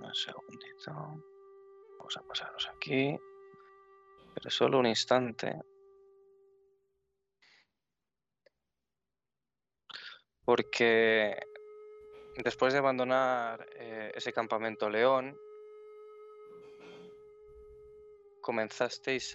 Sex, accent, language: male, Spanish, Spanish